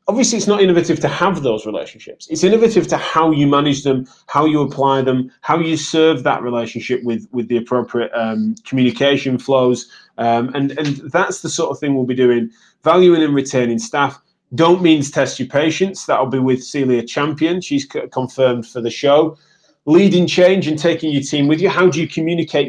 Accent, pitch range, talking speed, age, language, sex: British, 130-165 Hz, 195 wpm, 30-49, English, male